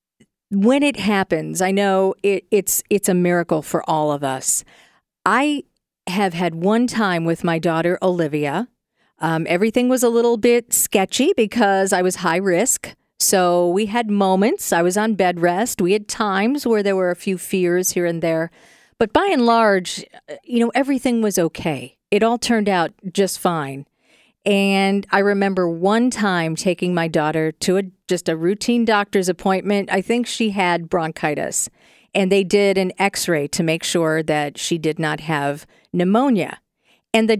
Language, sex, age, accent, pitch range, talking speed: English, female, 50-69, American, 175-215 Hz, 170 wpm